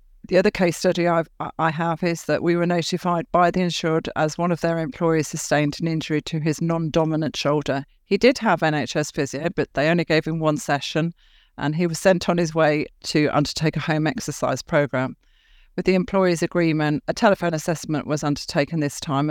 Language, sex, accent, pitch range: English, female, British, 150-175 Hz